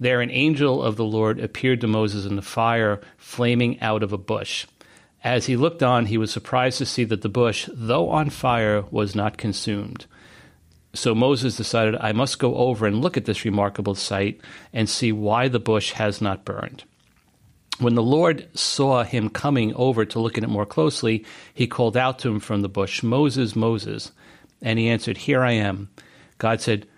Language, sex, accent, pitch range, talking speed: English, male, American, 105-125 Hz, 195 wpm